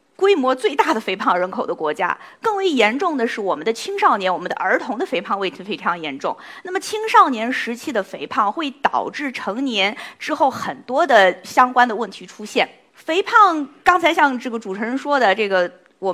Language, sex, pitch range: Chinese, female, 210-320 Hz